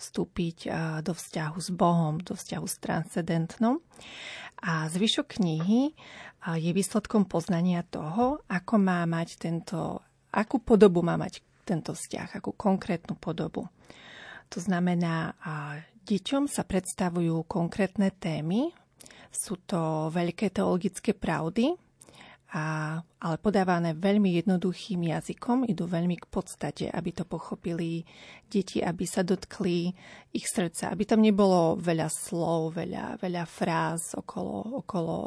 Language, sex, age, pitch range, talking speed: Slovak, female, 30-49, 170-200 Hz, 120 wpm